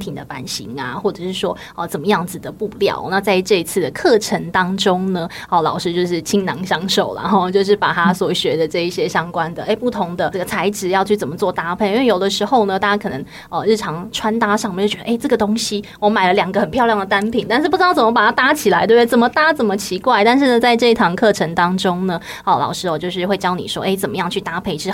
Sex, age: female, 20-39